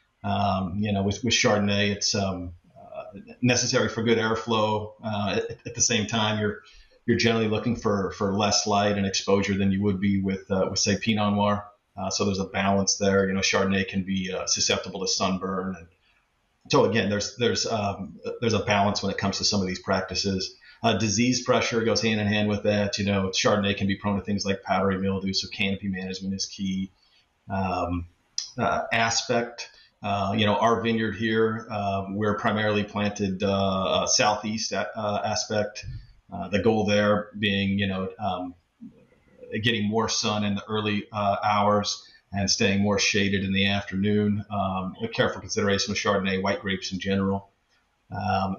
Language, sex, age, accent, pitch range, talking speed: English, male, 40-59, American, 95-105 Hz, 180 wpm